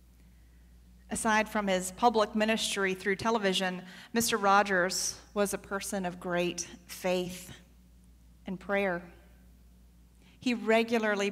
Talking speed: 100 wpm